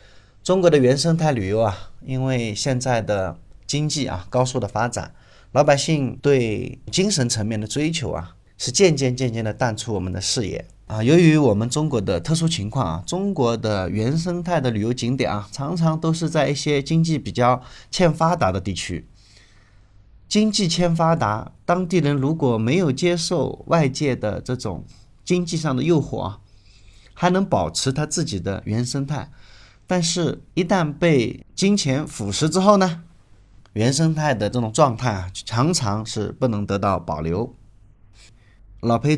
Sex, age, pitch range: male, 30-49, 105-150 Hz